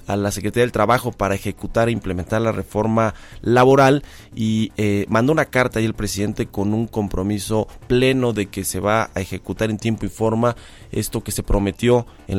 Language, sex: Spanish, male